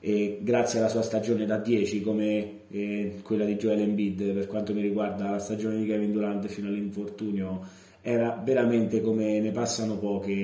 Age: 30-49